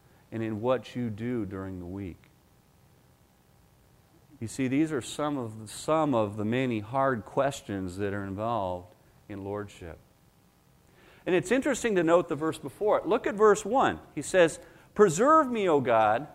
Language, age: English, 40-59